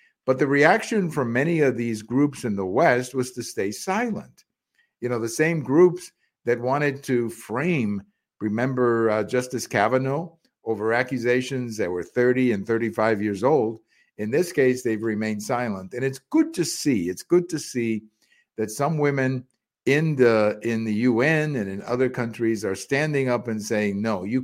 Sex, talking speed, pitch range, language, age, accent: male, 170 wpm, 110-135 Hz, English, 50-69, American